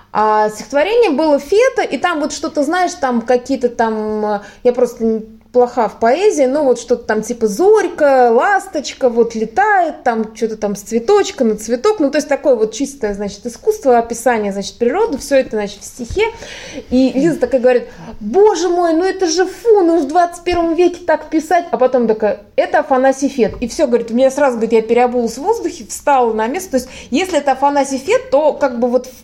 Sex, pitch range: female, 230-300 Hz